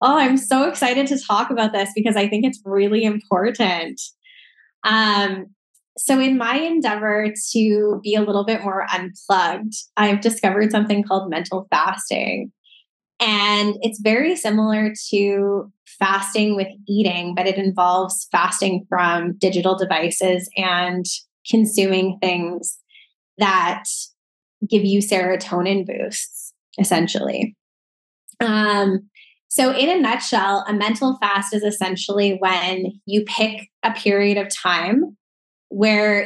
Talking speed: 120 wpm